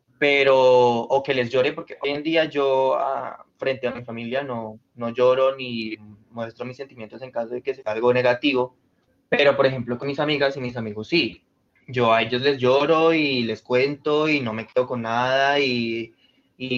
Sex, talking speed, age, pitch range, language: male, 195 wpm, 20-39, 120-140 Hz, Spanish